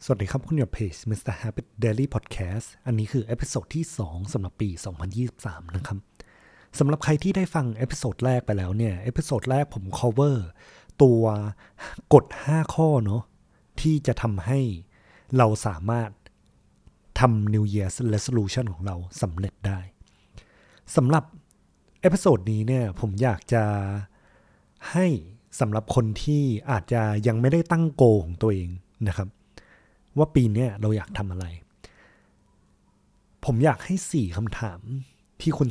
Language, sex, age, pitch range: Thai, male, 20-39, 100-130 Hz